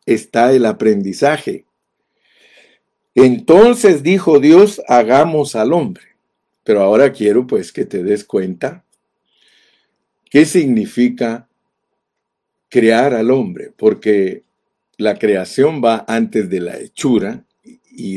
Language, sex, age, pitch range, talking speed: Spanish, male, 50-69, 110-180 Hz, 100 wpm